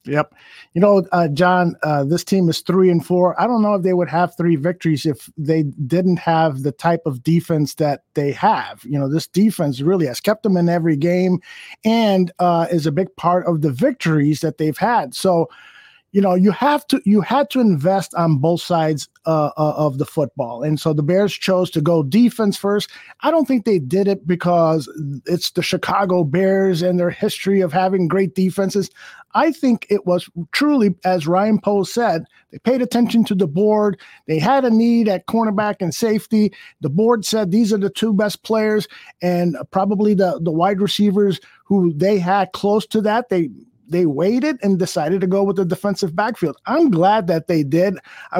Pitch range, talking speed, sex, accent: 165-205 Hz, 200 wpm, male, American